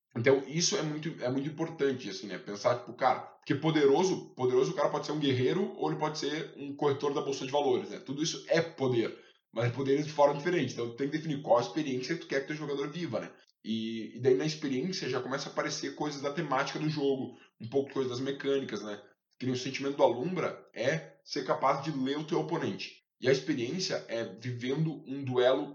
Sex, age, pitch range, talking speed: male, 10-29, 130-155 Hz, 225 wpm